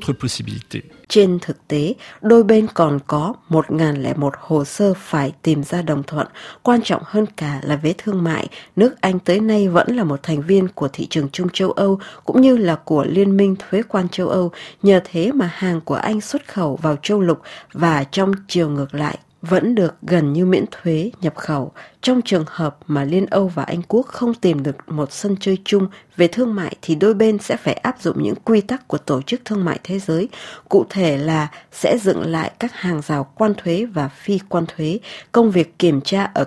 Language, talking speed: Vietnamese, 210 wpm